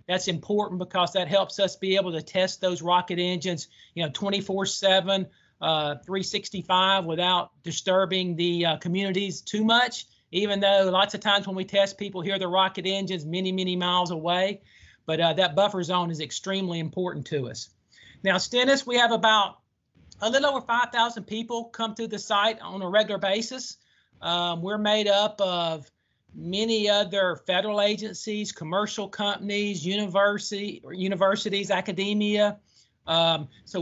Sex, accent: male, American